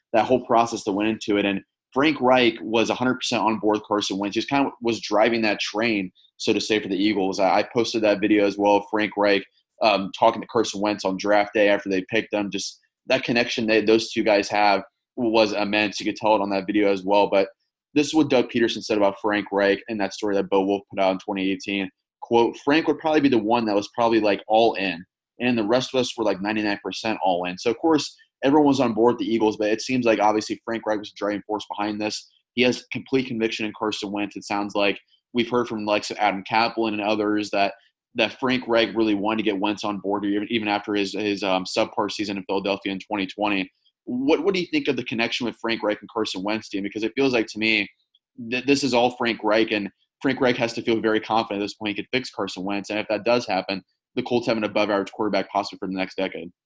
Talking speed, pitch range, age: 250 wpm, 100-115 Hz, 20-39